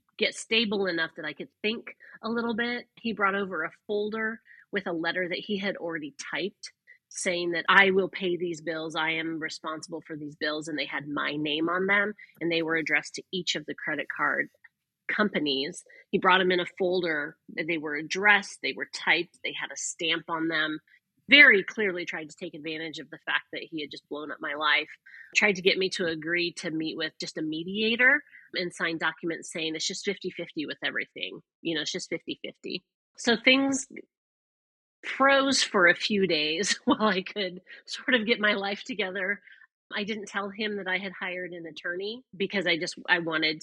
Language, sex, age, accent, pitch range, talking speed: English, female, 30-49, American, 160-210 Hz, 200 wpm